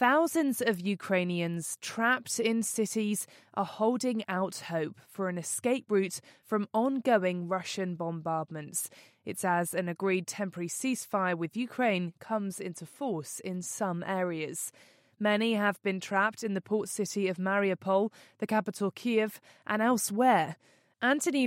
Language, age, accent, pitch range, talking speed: English, 20-39, British, 180-220 Hz, 135 wpm